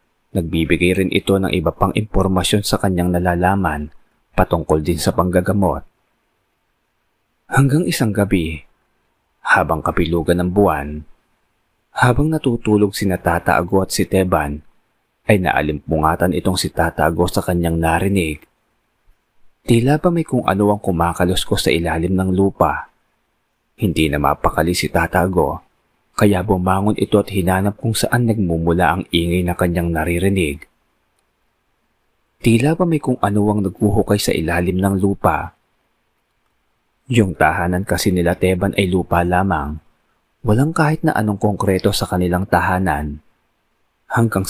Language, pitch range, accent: Filipino, 85-105 Hz, native